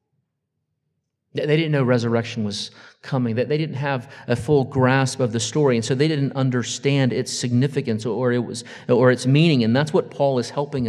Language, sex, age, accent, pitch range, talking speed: English, male, 40-59, American, 130-175 Hz, 195 wpm